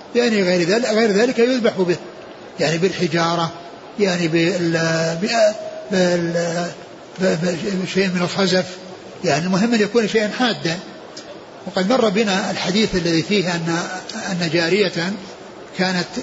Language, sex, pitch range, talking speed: Arabic, male, 160-185 Hz, 105 wpm